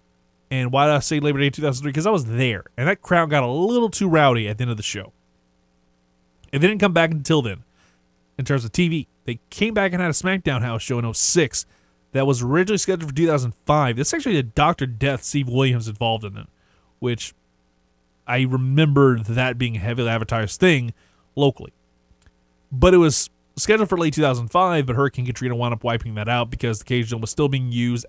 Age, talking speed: 20-39, 205 wpm